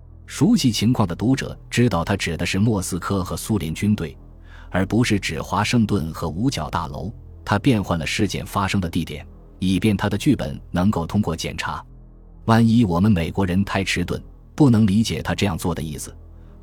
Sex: male